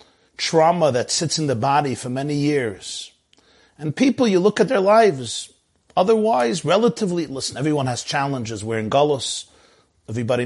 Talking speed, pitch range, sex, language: 150 wpm, 120-160 Hz, male, English